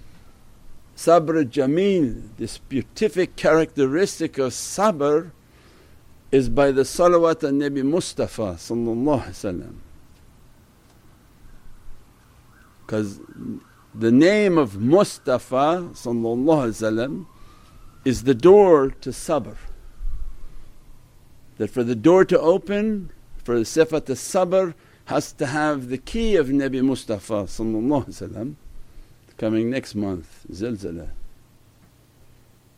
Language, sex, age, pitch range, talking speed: English, male, 60-79, 120-165 Hz, 90 wpm